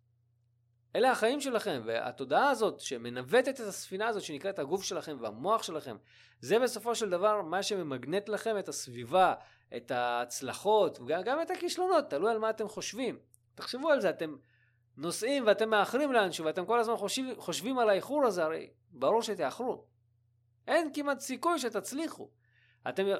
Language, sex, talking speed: Hebrew, male, 145 wpm